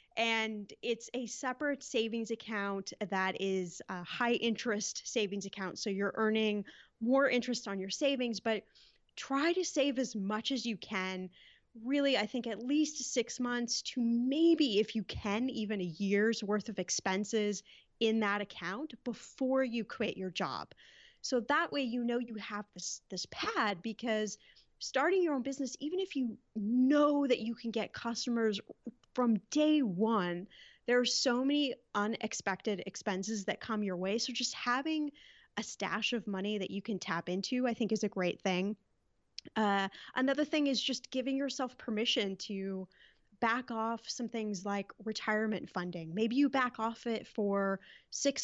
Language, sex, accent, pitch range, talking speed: English, female, American, 205-255 Hz, 165 wpm